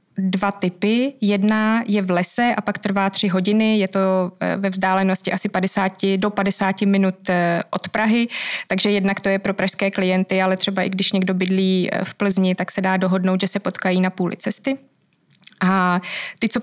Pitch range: 190-210 Hz